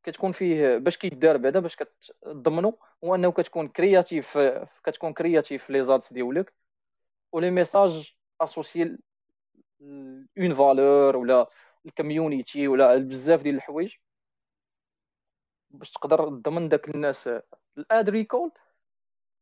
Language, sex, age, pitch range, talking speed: Arabic, male, 20-39, 140-180 Hz, 100 wpm